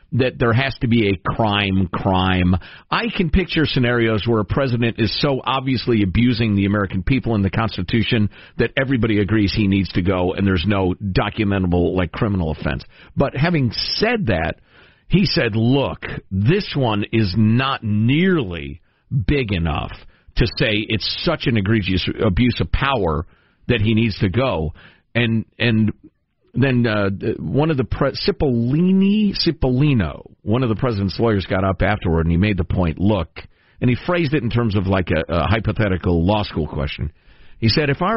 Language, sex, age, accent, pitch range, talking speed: English, male, 50-69, American, 95-125 Hz, 170 wpm